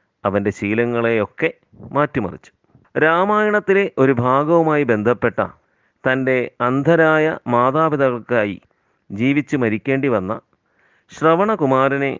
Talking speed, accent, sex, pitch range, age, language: 70 wpm, native, male, 105-145 Hz, 30-49, Malayalam